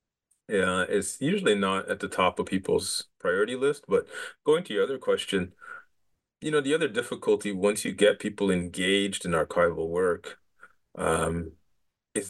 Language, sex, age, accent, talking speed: English, male, 30-49, American, 155 wpm